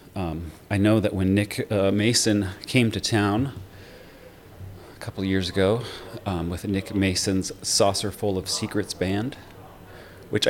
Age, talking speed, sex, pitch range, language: 30-49, 150 wpm, male, 90-110 Hz, English